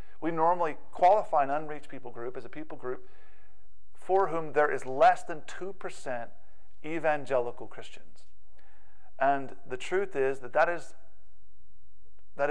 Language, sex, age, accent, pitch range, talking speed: English, male, 40-59, American, 125-165 Hz, 140 wpm